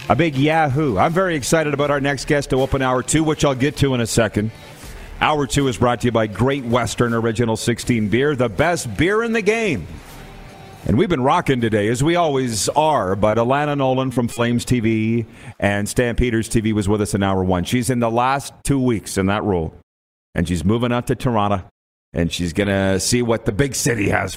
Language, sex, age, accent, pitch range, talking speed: English, male, 40-59, American, 105-130 Hz, 215 wpm